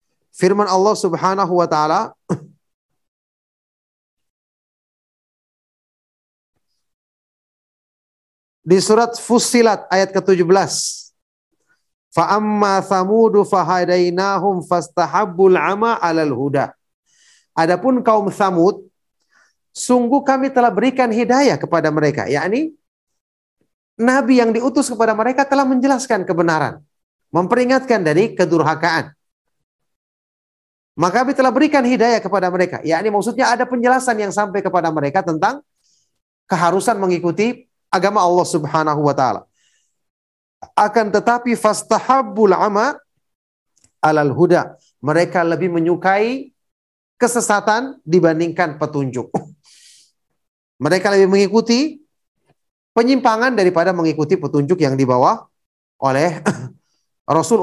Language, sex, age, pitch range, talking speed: Indonesian, male, 40-59, 165-230 Hz, 85 wpm